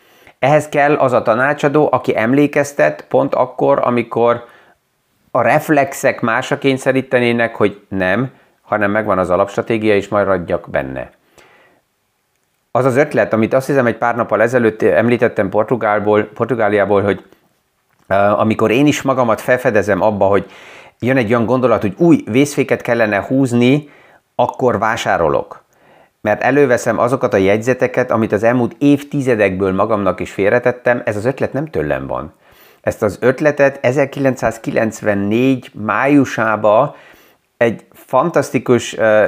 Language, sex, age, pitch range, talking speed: Hungarian, male, 30-49, 105-130 Hz, 120 wpm